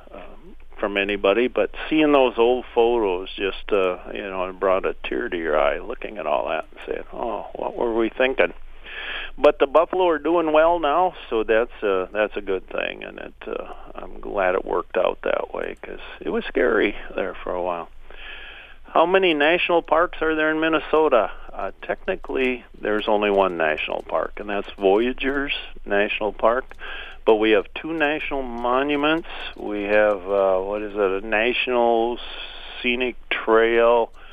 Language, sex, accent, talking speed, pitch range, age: English, male, American, 170 wpm, 105-130 Hz, 50-69